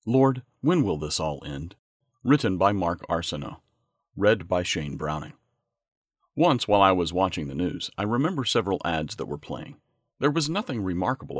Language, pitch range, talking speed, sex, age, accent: English, 85-135 Hz, 170 wpm, male, 40-59, American